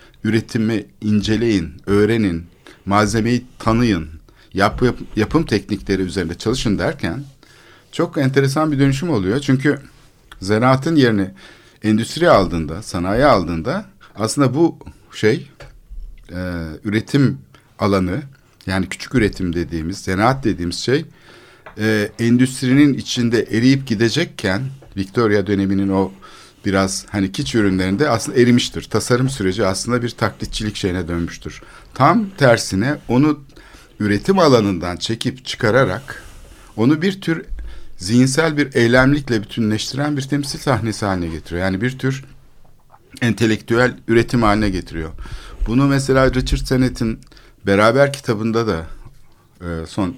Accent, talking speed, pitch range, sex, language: native, 110 wpm, 95-130 Hz, male, Turkish